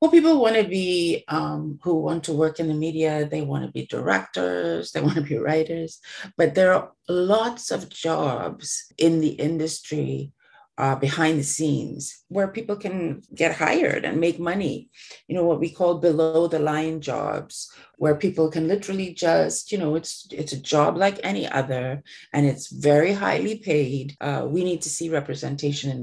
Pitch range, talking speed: 145-175 Hz, 180 wpm